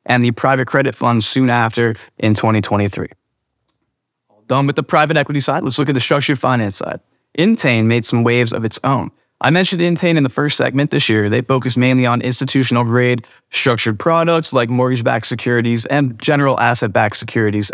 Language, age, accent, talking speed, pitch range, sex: English, 20-39, American, 180 wpm, 115-140 Hz, male